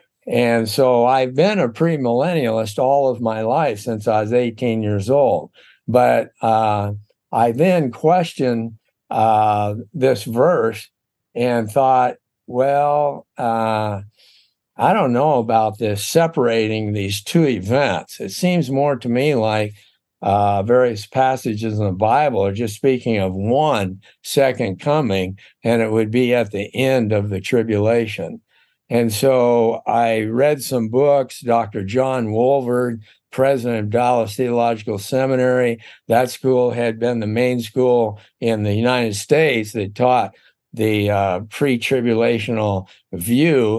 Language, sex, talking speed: English, male, 135 wpm